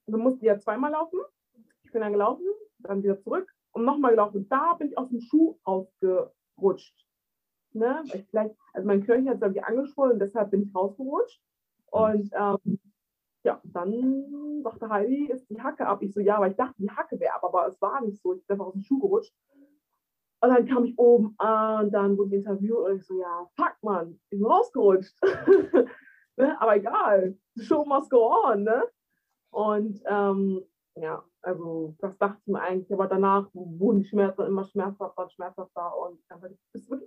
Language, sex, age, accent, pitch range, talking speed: German, female, 20-39, German, 195-270 Hz, 195 wpm